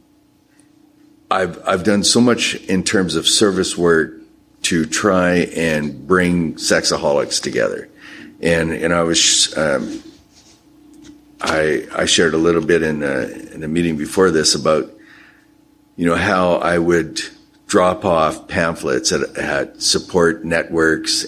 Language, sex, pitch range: English, male, 80-105 Hz